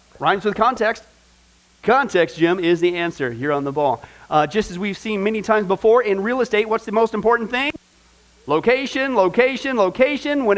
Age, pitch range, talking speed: 40-59, 185-245 Hz, 180 wpm